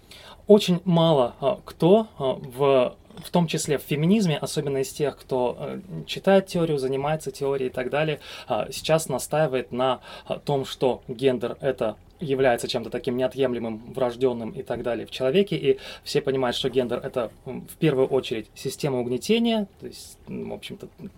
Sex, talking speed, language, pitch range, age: male, 150 wpm, Russian, 125-165 Hz, 20-39